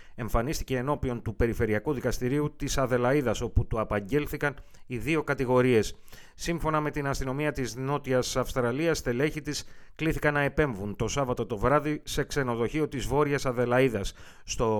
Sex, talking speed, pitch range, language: male, 140 wpm, 115-145 Hz, Greek